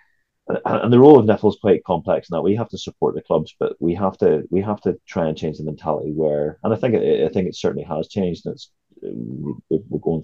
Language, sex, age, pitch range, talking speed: English, male, 30-49, 75-90 Hz, 245 wpm